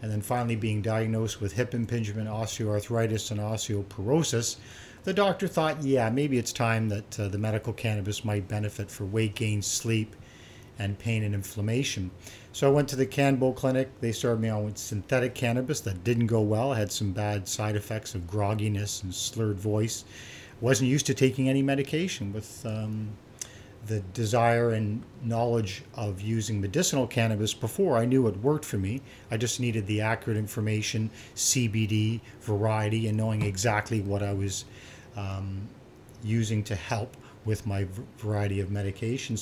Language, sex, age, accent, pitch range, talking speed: English, male, 50-69, American, 105-130 Hz, 160 wpm